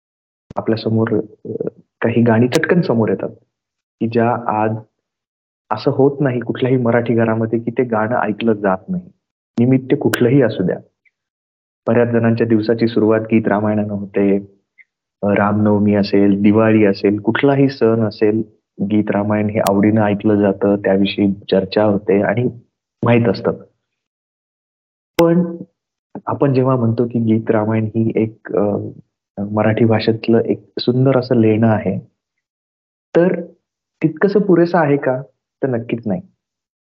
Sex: male